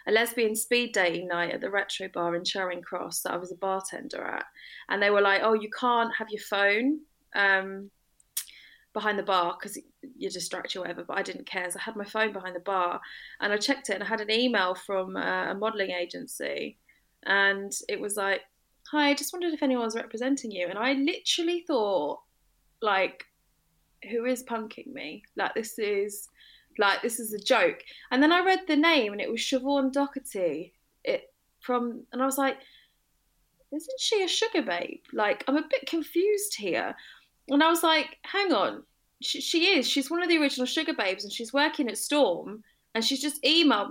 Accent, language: British, English